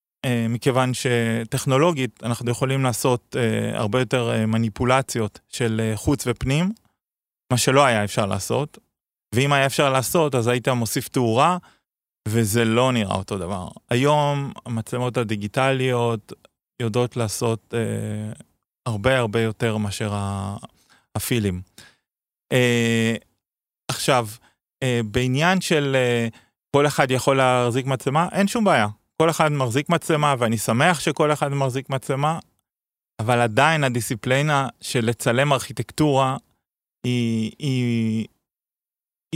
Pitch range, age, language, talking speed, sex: 120-160 Hz, 20-39, Hebrew, 115 wpm, male